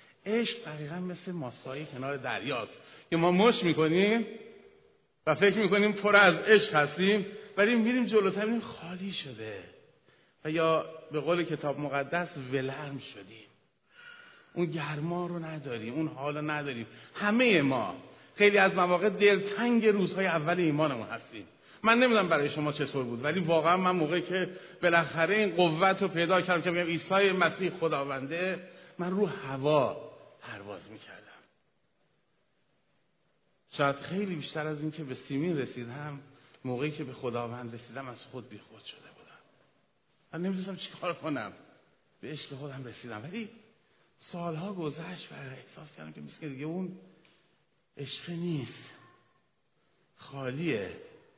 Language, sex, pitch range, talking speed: Persian, male, 145-195 Hz, 135 wpm